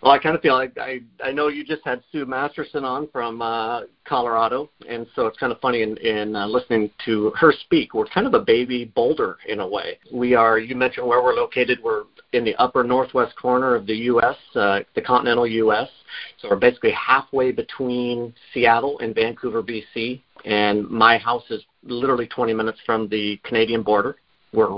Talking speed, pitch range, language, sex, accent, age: 195 wpm, 115-130 Hz, English, male, American, 50-69